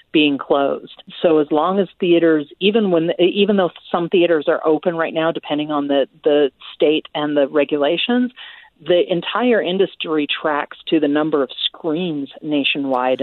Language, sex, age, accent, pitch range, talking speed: English, female, 40-59, American, 150-175 Hz, 160 wpm